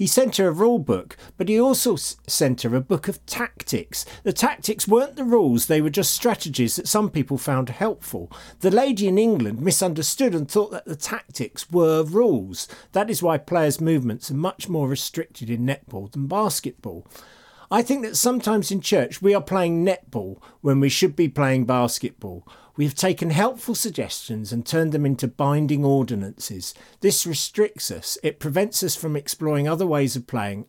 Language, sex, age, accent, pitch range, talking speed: English, male, 50-69, British, 120-185 Hz, 180 wpm